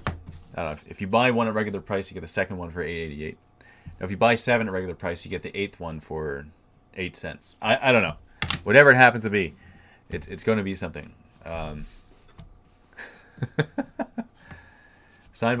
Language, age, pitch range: English, 30-49, 85-110 Hz